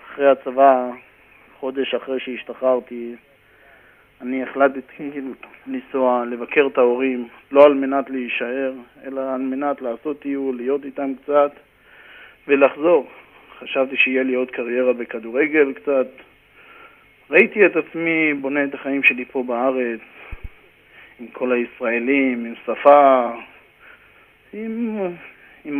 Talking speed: 110 wpm